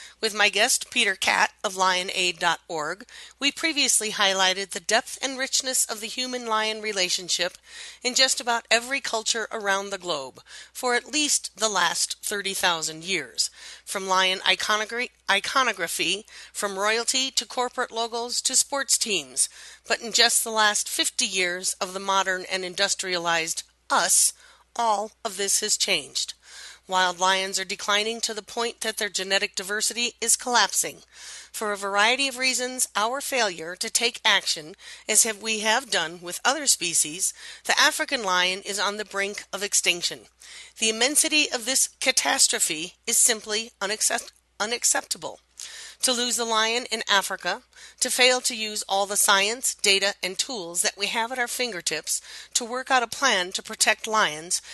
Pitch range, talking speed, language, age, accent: 195-240 Hz, 155 wpm, English, 40-59, American